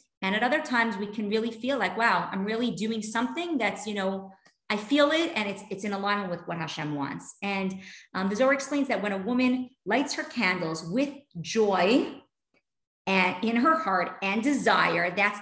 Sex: female